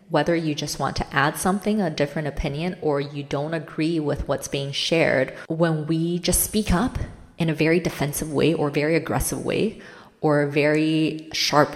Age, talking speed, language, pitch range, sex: 20-39, 185 wpm, English, 140-185 Hz, female